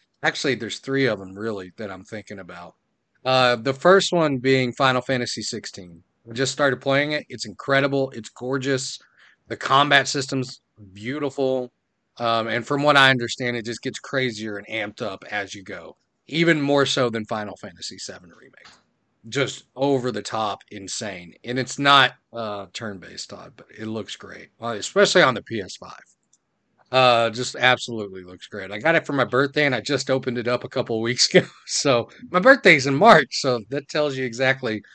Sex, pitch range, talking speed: male, 110-140 Hz, 175 wpm